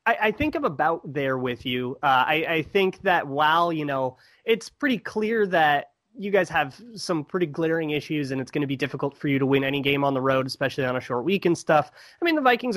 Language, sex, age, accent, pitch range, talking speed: English, male, 30-49, American, 135-180 Hz, 250 wpm